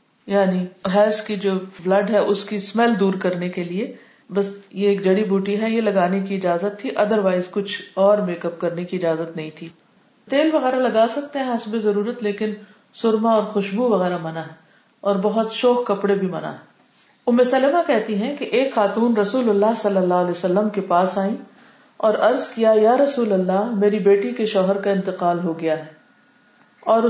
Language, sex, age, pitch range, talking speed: Urdu, female, 40-59, 190-235 Hz, 190 wpm